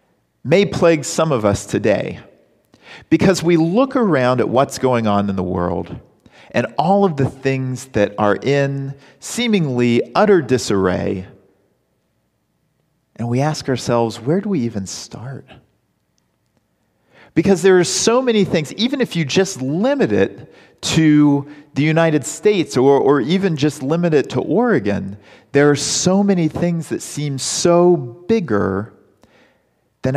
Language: English